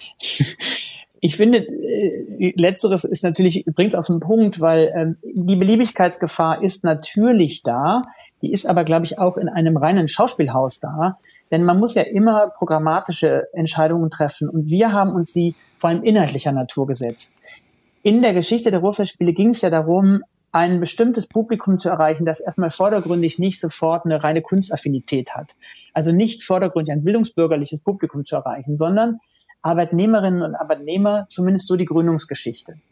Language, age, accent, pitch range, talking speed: German, 40-59, German, 155-200 Hz, 155 wpm